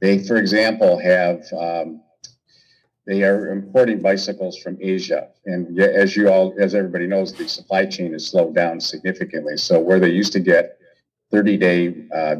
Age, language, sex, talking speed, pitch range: 50-69, English, male, 165 wpm, 90-105 Hz